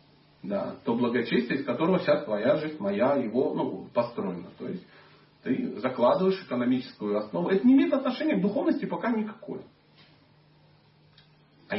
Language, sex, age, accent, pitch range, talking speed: Russian, male, 40-59, native, 160-235 Hz, 135 wpm